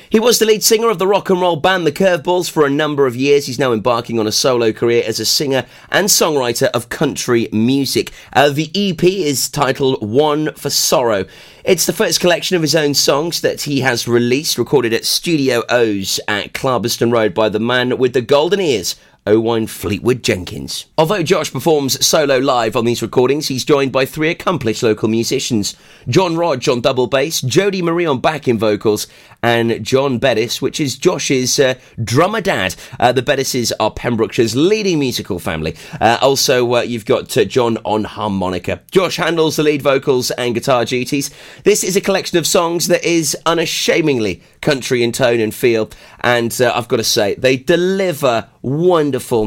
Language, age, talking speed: English, 30-49, 185 wpm